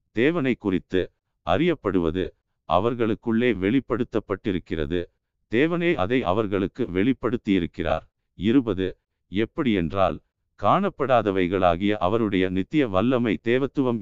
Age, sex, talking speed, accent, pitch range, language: 50-69, male, 75 wpm, native, 95-125 Hz, Tamil